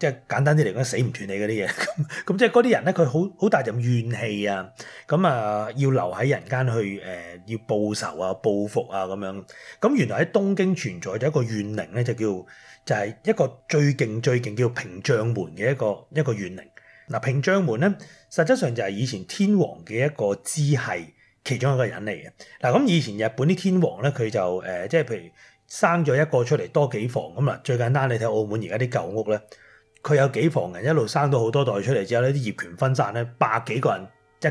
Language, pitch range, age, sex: Chinese, 115-165 Hz, 30-49, male